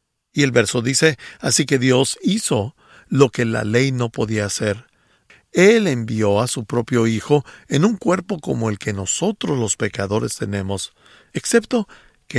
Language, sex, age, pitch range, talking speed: English, male, 50-69, 110-150 Hz, 160 wpm